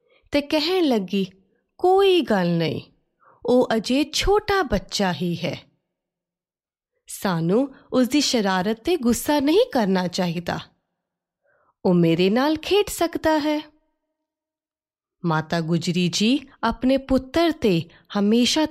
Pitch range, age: 180-275 Hz, 30-49